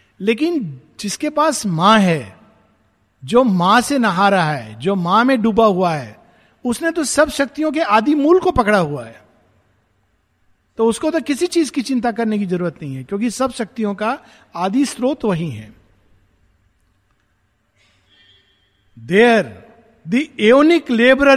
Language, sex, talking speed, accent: Hindi, male, 145 wpm, native